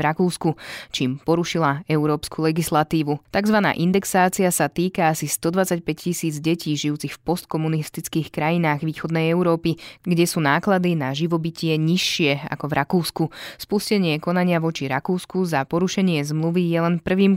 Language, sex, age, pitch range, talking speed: Slovak, female, 20-39, 155-180 Hz, 135 wpm